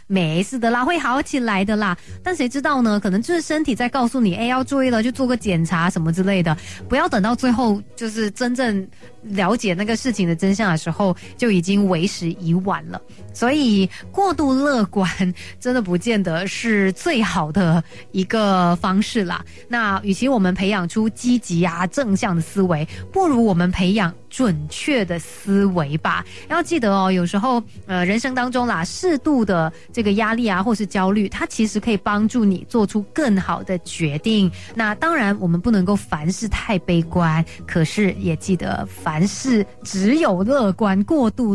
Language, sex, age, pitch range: Chinese, female, 30-49, 180-240 Hz